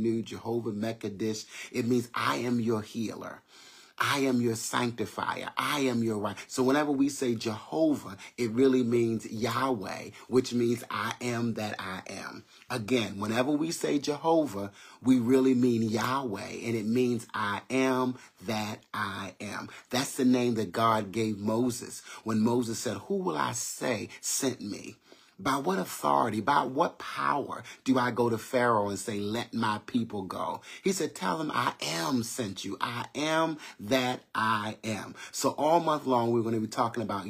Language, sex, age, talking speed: English, male, 40-59, 170 wpm